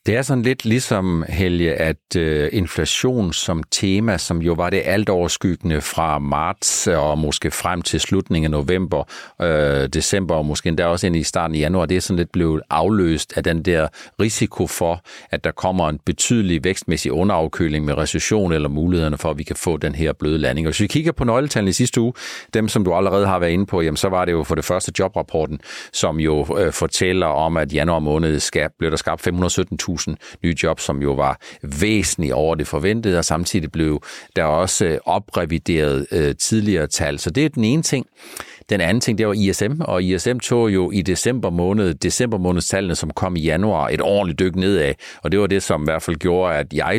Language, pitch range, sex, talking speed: Danish, 80-105 Hz, male, 205 wpm